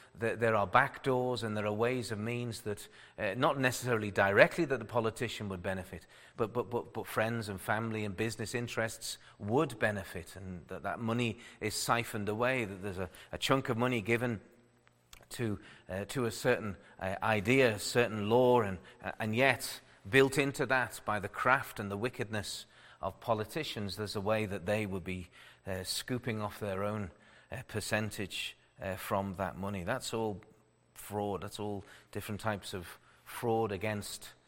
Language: English